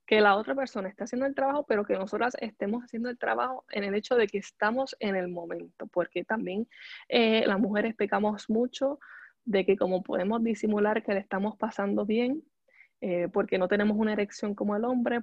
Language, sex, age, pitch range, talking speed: Spanish, female, 10-29, 195-240 Hz, 195 wpm